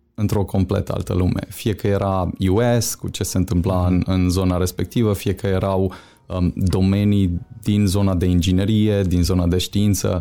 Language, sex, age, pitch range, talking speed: Romanian, male, 20-39, 95-110 Hz, 170 wpm